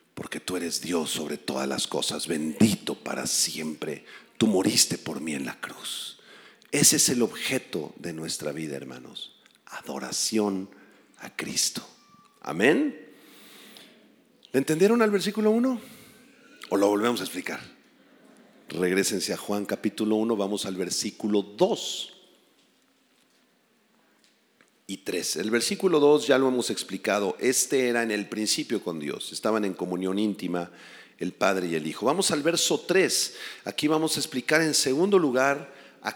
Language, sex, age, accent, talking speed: Spanish, male, 50-69, Mexican, 145 wpm